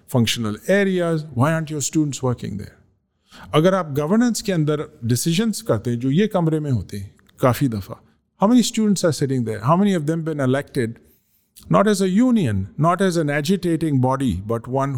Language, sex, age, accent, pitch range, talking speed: English, male, 50-69, Indian, 115-150 Hz, 160 wpm